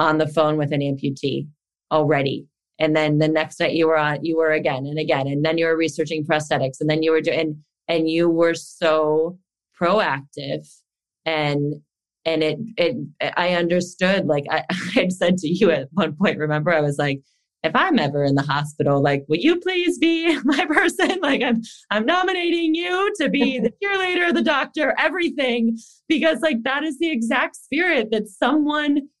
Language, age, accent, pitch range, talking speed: English, 20-39, American, 155-230 Hz, 185 wpm